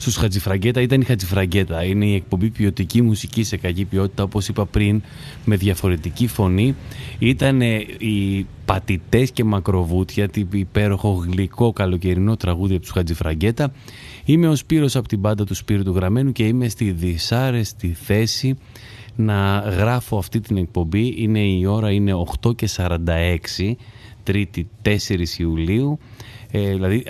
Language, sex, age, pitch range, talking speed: Greek, male, 30-49, 95-120 Hz, 135 wpm